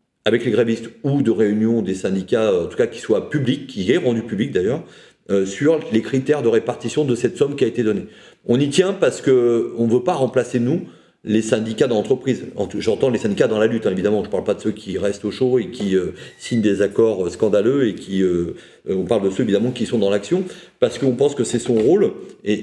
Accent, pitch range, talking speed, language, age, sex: French, 100-130 Hz, 240 wpm, French, 40-59, male